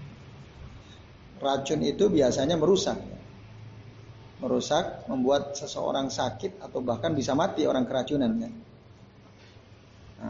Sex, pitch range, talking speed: male, 120-175 Hz, 85 wpm